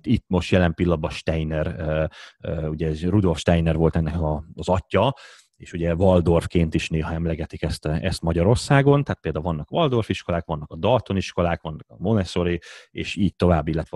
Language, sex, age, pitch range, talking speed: Hungarian, male, 30-49, 80-95 Hz, 160 wpm